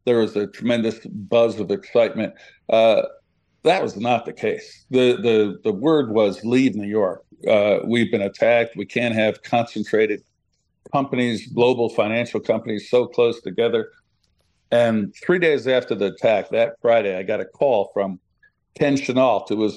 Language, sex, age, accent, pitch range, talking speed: English, male, 60-79, American, 110-135 Hz, 160 wpm